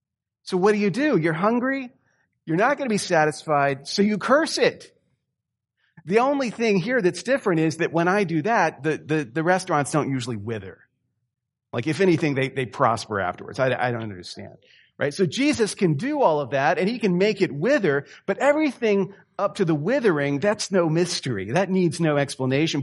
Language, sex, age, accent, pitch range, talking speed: English, male, 40-59, American, 140-200 Hz, 195 wpm